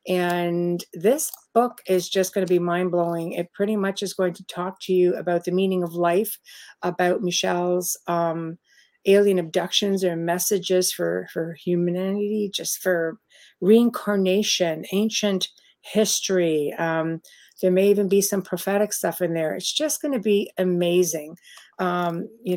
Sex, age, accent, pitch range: female, 50-69, American, 175-205 Hz